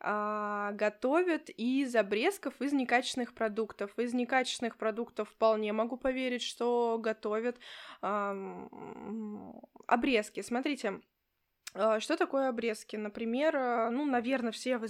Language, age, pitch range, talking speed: Russian, 20-39, 215-255 Hz, 100 wpm